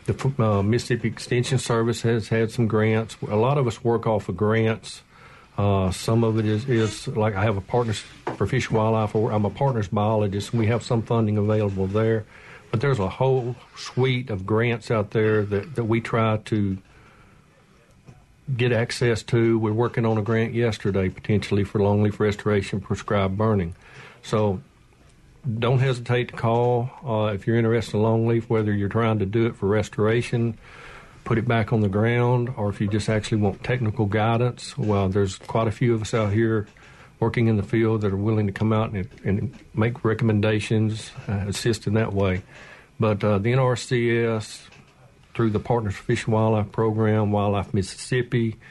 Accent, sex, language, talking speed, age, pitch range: American, male, English, 180 wpm, 50-69, 105-120 Hz